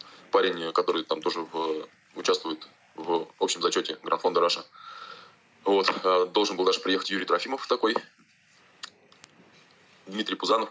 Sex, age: male, 20-39